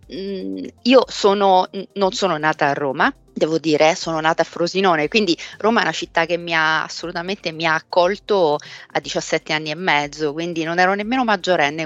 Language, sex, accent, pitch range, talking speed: Italian, female, native, 165-235 Hz, 175 wpm